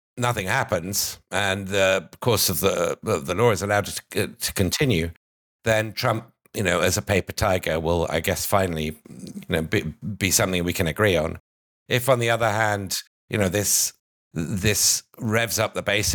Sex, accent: male, British